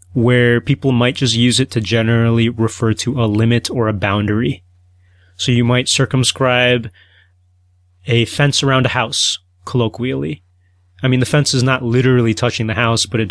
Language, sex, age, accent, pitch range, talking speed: English, male, 30-49, American, 105-130 Hz, 165 wpm